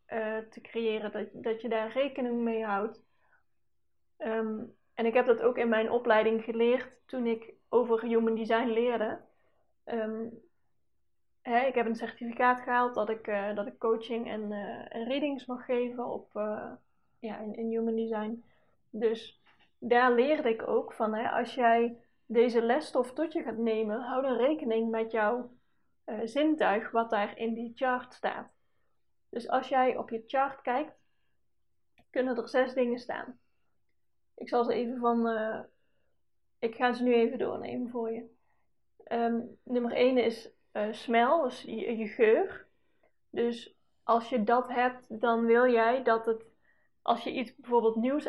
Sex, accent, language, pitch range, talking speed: female, Dutch, Dutch, 225-250 Hz, 150 wpm